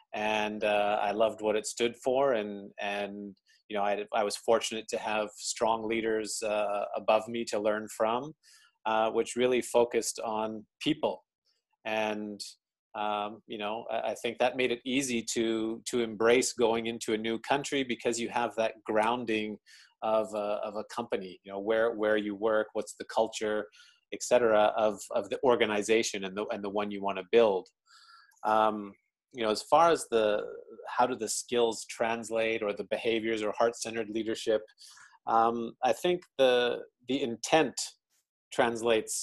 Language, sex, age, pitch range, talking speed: English, male, 30-49, 105-120 Hz, 170 wpm